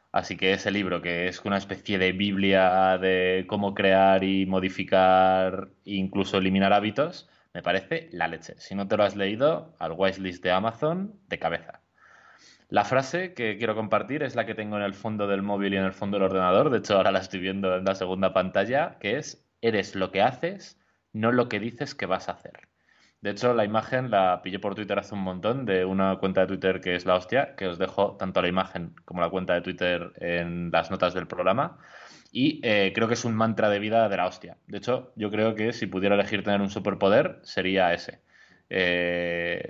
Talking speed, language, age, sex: 215 wpm, Spanish, 20-39, male